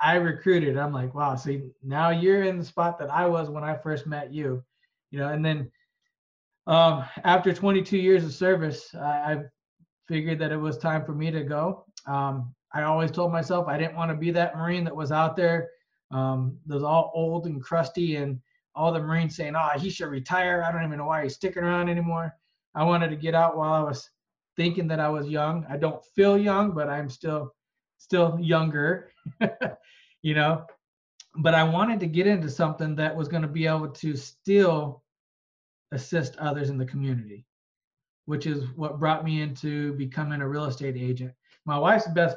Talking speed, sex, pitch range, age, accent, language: 195 wpm, male, 145-170 Hz, 20-39, American, English